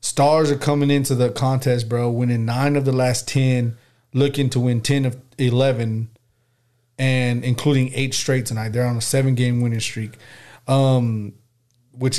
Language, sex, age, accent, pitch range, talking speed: English, male, 30-49, American, 120-130 Hz, 160 wpm